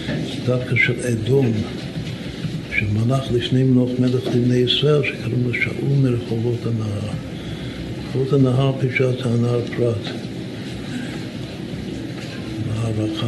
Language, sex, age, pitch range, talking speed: Hebrew, male, 60-79, 110-125 Hz, 95 wpm